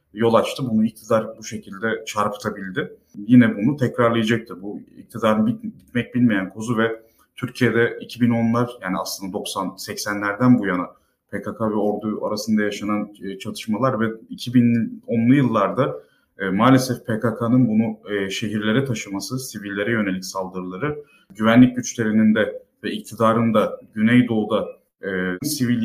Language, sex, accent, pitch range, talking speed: Turkish, male, native, 110-125 Hz, 115 wpm